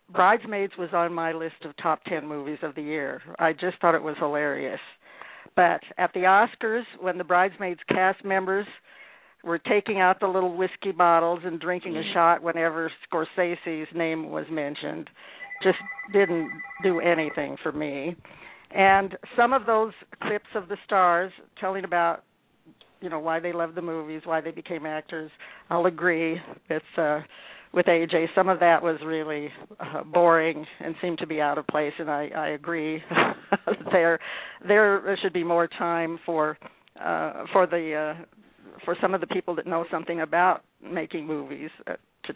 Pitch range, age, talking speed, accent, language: 160-190 Hz, 60-79, 165 wpm, American, English